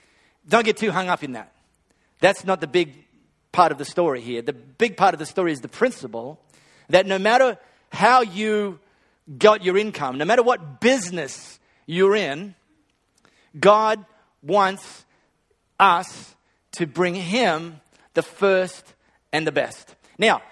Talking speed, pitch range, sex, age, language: 150 wpm, 145-200 Hz, male, 40-59, English